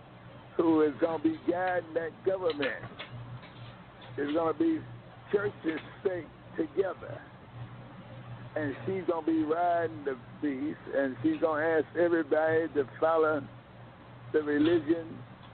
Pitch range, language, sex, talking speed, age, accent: 125-170 Hz, English, male, 110 wpm, 60-79, American